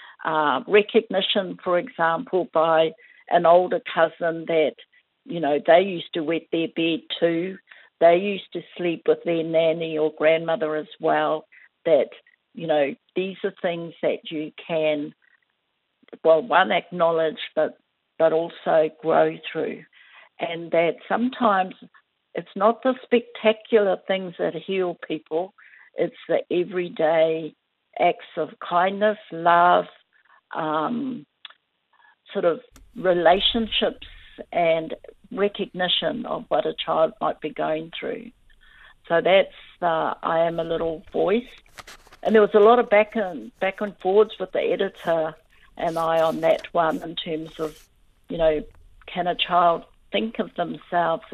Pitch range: 160-205 Hz